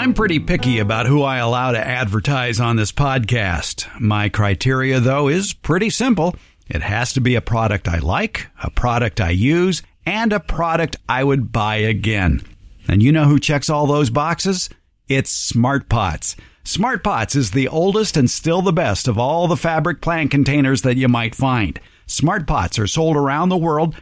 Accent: American